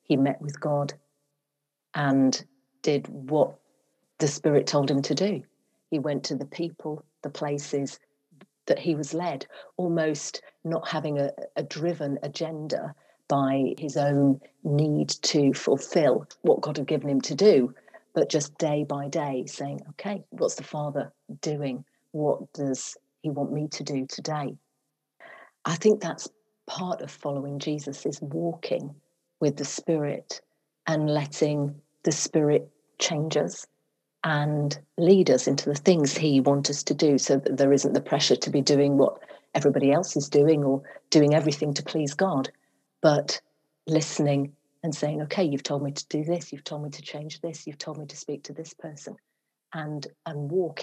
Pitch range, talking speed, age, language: 140-160 Hz, 165 wpm, 40-59, English